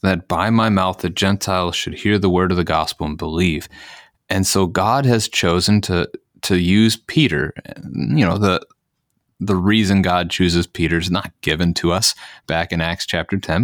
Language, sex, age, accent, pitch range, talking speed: English, male, 30-49, American, 85-105 Hz, 185 wpm